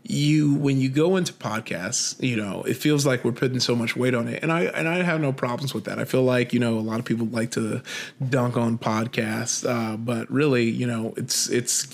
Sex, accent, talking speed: male, American, 240 wpm